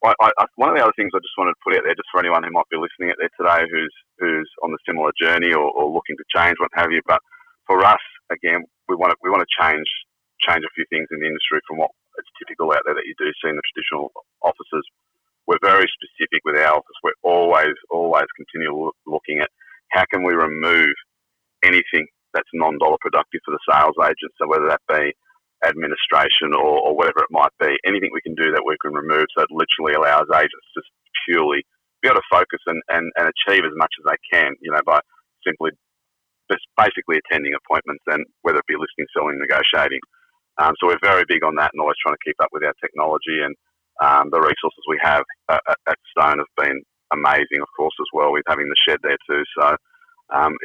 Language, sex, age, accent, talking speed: English, male, 30-49, Australian, 225 wpm